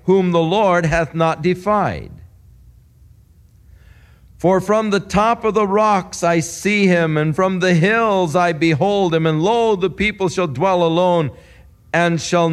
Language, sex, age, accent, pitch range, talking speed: English, male, 50-69, American, 115-190 Hz, 155 wpm